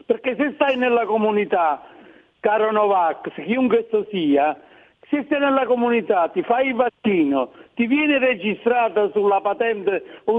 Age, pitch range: 60-79, 195-255 Hz